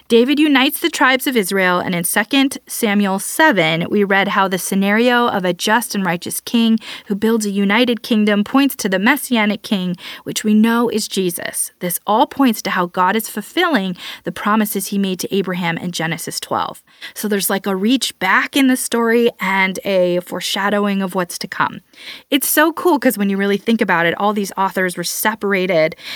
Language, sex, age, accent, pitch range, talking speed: English, female, 20-39, American, 190-255 Hz, 195 wpm